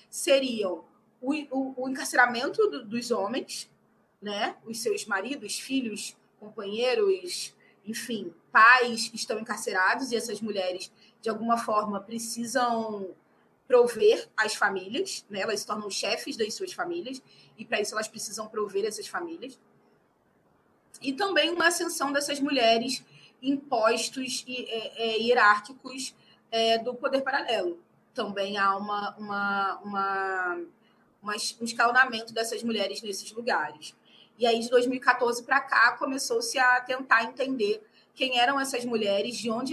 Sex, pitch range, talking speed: female, 210-260 Hz, 130 wpm